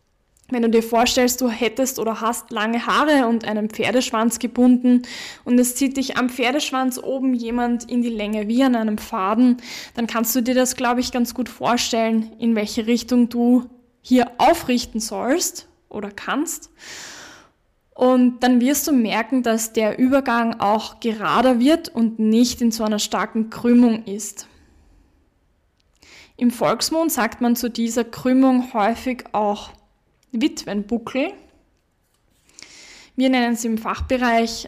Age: 10-29